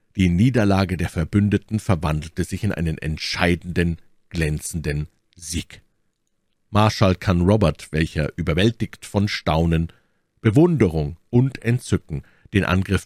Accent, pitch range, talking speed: German, 85-110 Hz, 105 wpm